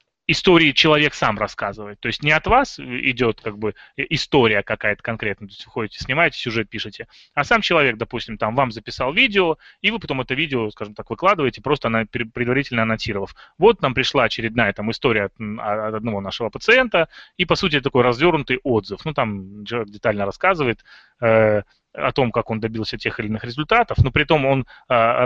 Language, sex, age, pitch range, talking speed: Russian, male, 20-39, 110-145 Hz, 180 wpm